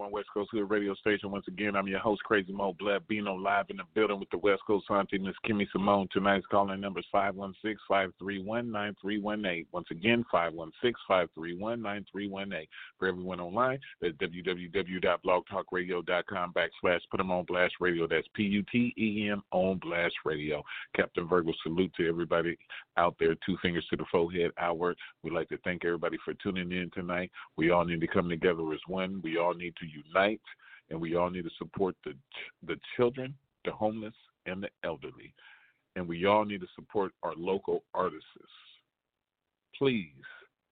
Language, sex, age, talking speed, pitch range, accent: English, male, 40-59, 165 wpm, 90-105 Hz, American